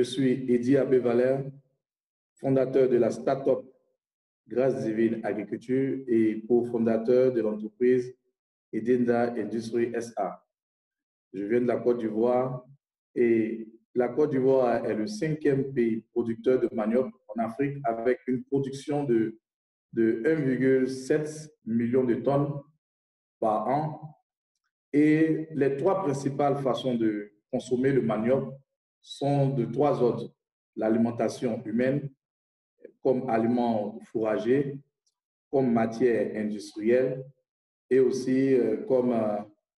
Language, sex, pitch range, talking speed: French, male, 115-135 Hz, 110 wpm